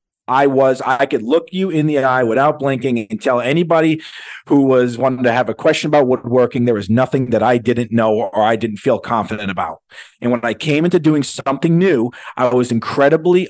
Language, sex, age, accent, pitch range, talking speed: English, male, 40-59, American, 125-160 Hz, 215 wpm